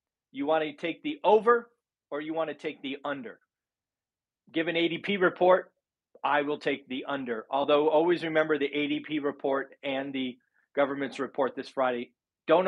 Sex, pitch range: male, 145-180 Hz